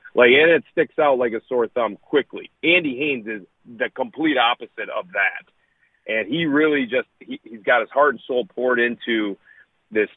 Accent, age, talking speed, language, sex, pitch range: American, 30-49, 190 wpm, English, male, 120-145 Hz